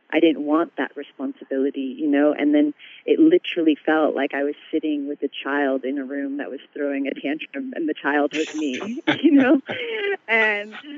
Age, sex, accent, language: 30-49, female, American, English